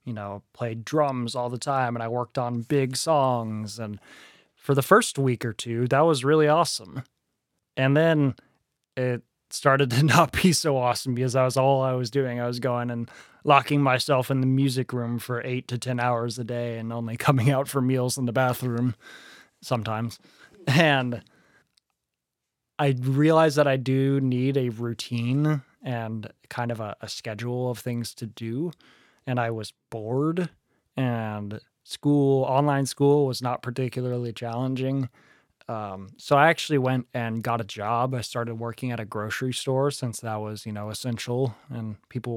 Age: 20-39